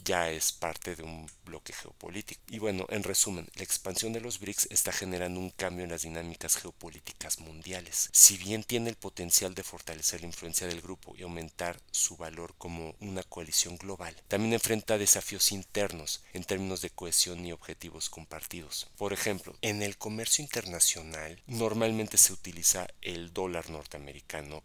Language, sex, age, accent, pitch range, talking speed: Spanish, male, 40-59, Mexican, 85-95 Hz, 165 wpm